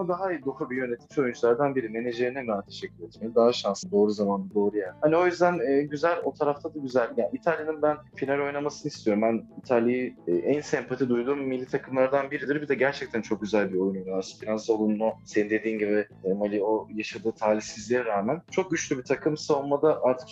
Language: Turkish